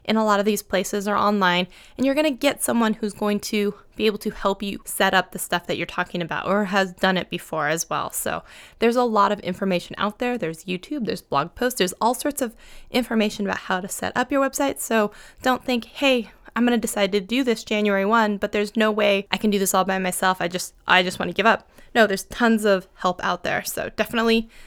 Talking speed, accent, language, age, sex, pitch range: 250 wpm, American, English, 20-39, female, 195-240 Hz